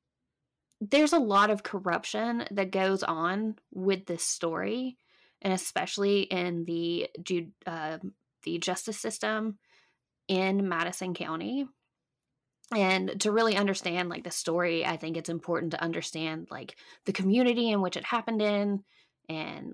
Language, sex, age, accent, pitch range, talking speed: English, female, 20-39, American, 170-230 Hz, 135 wpm